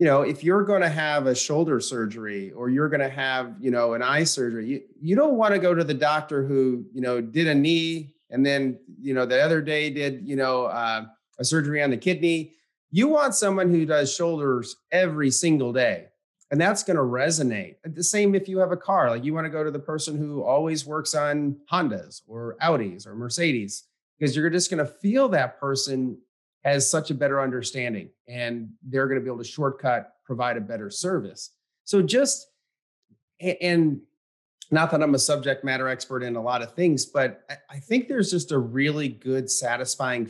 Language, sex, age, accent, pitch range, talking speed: English, male, 30-49, American, 125-165 Hz, 205 wpm